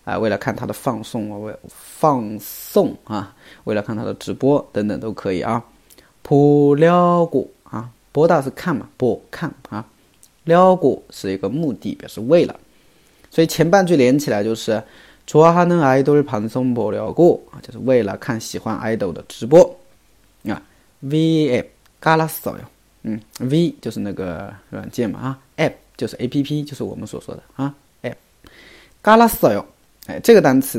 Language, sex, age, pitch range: Chinese, male, 30-49, 110-155 Hz